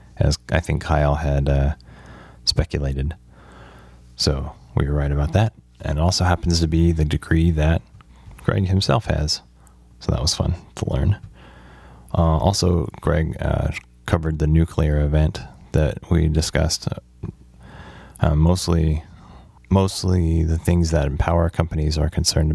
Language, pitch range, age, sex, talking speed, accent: English, 75-85 Hz, 30-49, male, 140 wpm, American